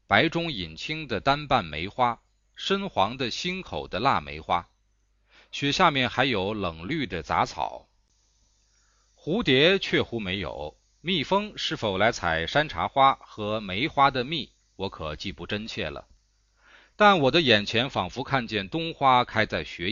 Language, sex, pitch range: Chinese, male, 100-150 Hz